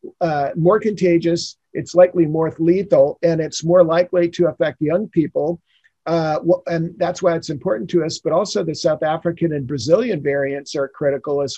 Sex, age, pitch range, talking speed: male, 50-69, 155-180 Hz, 175 wpm